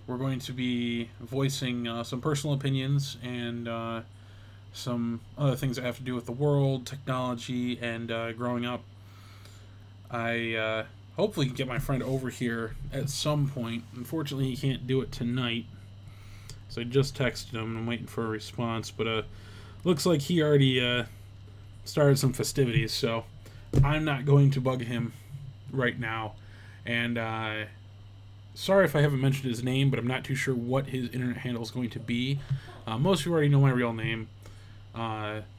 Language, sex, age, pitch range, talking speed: English, male, 20-39, 110-135 Hz, 180 wpm